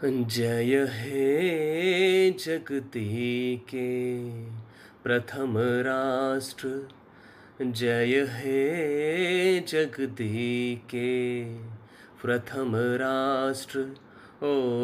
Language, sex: Hindi, male